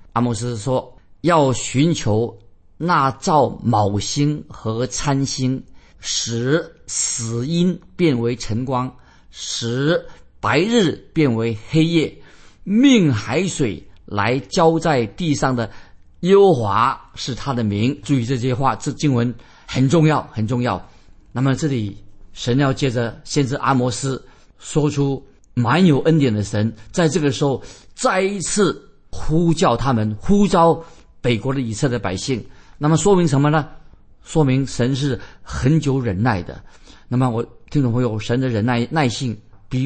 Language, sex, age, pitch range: Chinese, male, 50-69, 115-150 Hz